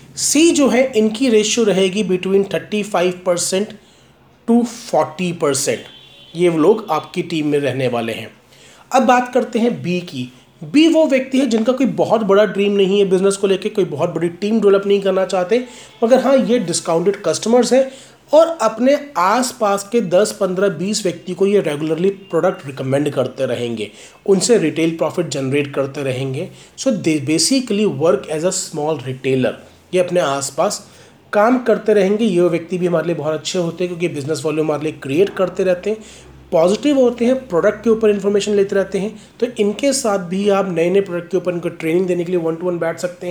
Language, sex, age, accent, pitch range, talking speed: Hindi, male, 30-49, native, 160-215 Hz, 195 wpm